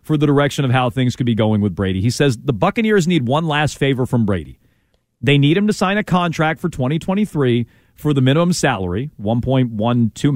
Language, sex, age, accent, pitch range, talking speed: English, male, 40-59, American, 120-160 Hz, 205 wpm